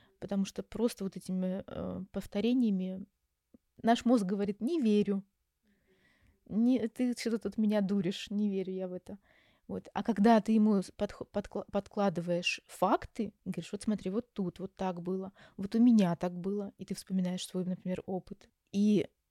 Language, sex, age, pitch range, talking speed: Russian, female, 20-39, 185-225 Hz, 160 wpm